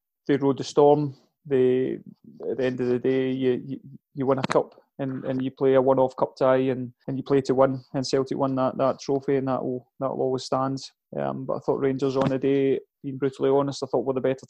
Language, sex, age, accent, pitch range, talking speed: English, male, 30-49, British, 130-140 Hz, 250 wpm